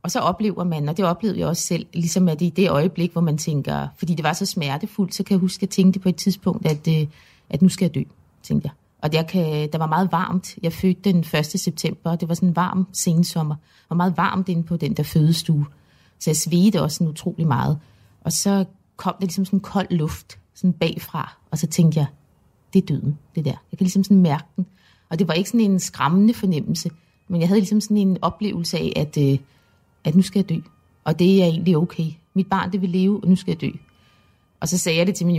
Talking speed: 240 wpm